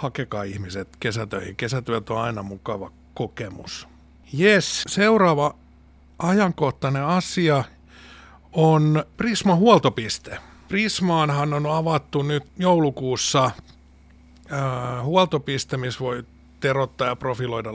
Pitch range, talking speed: 105-155 Hz, 90 wpm